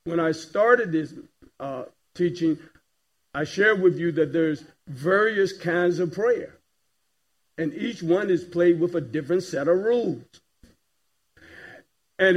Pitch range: 170-225 Hz